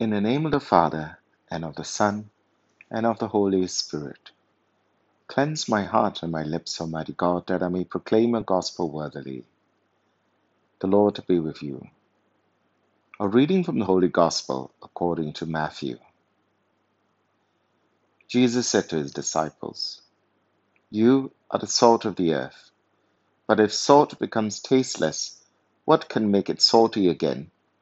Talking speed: 145 wpm